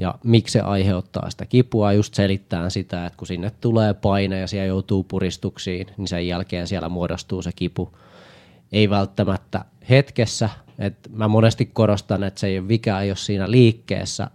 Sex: male